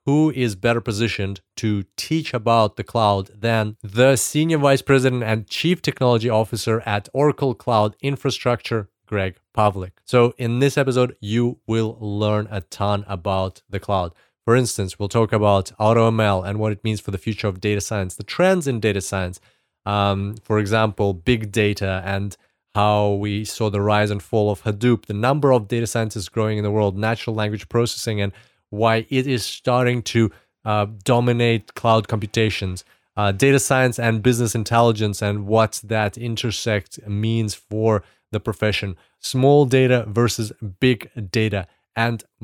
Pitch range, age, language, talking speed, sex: 105-120 Hz, 30-49, English, 160 wpm, male